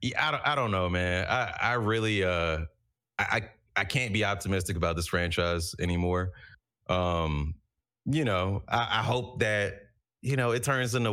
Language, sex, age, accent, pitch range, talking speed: English, male, 30-49, American, 85-110 Hz, 175 wpm